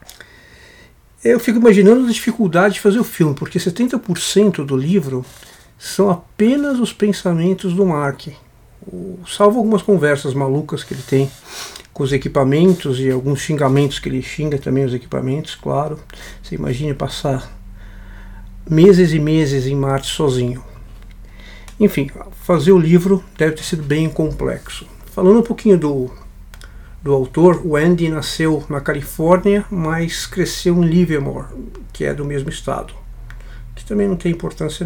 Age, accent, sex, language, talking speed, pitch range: 60-79, Brazilian, male, Portuguese, 140 wpm, 135-185 Hz